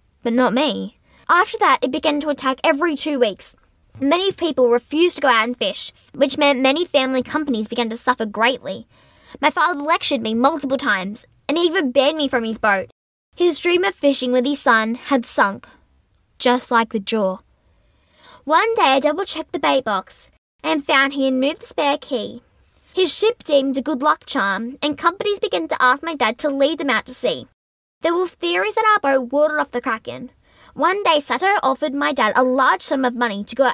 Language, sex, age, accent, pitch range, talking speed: English, female, 10-29, Australian, 245-315 Hz, 205 wpm